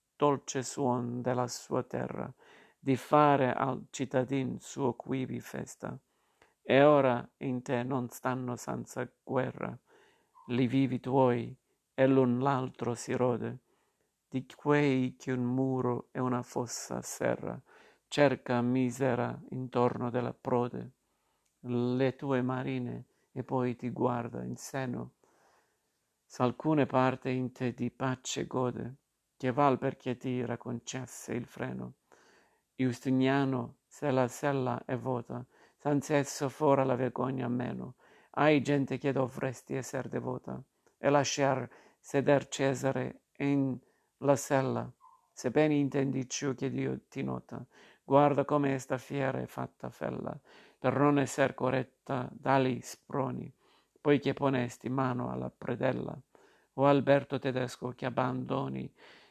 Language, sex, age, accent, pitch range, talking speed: Italian, male, 50-69, native, 125-135 Hz, 120 wpm